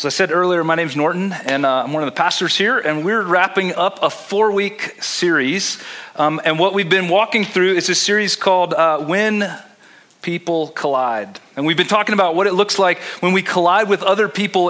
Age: 40-59